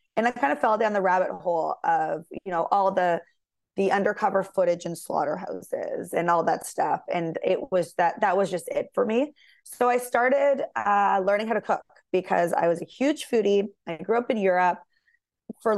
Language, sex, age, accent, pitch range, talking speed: English, female, 20-39, American, 175-230 Hz, 200 wpm